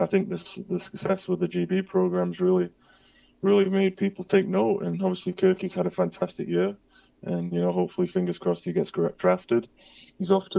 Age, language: 20-39, English